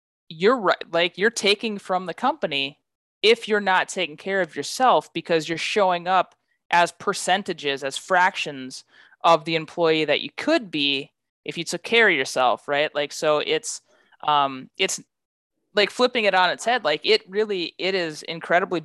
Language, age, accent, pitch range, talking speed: English, 20-39, American, 145-180 Hz, 170 wpm